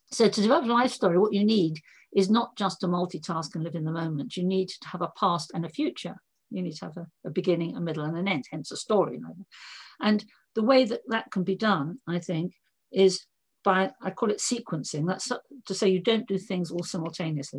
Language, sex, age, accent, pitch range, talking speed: English, female, 50-69, British, 165-210 Hz, 240 wpm